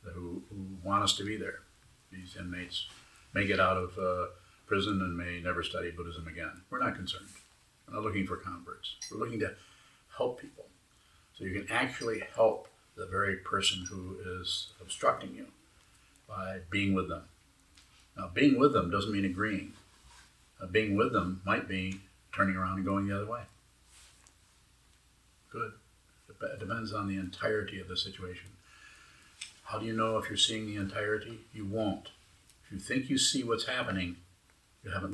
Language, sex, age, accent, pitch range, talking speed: English, male, 50-69, American, 90-105 Hz, 165 wpm